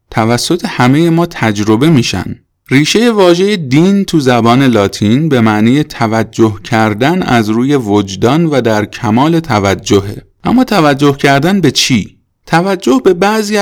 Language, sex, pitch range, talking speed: Persian, male, 110-150 Hz, 130 wpm